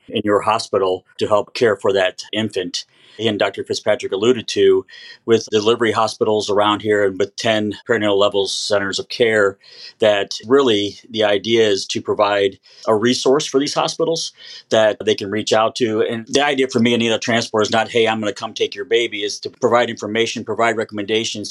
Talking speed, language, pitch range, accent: 190 wpm, English, 105-130 Hz, American